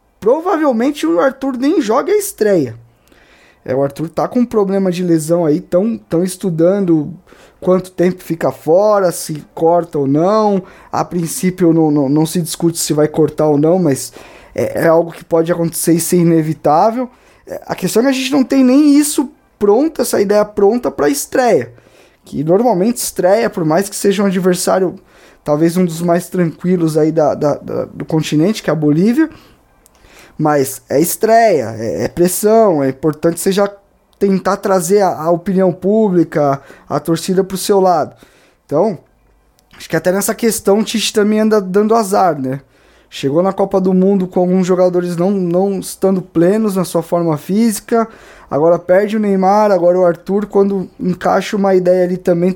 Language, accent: Portuguese, Brazilian